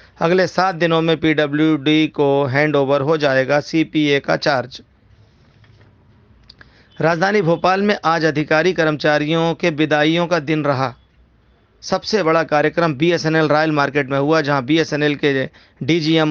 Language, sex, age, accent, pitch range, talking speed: Hindi, male, 40-59, native, 140-155 Hz, 130 wpm